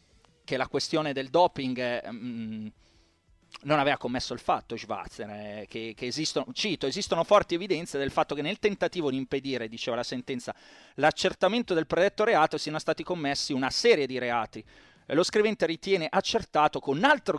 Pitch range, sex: 130-195 Hz, male